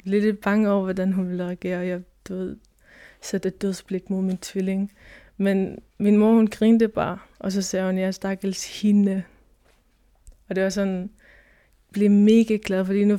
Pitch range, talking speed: 185-205 Hz, 190 wpm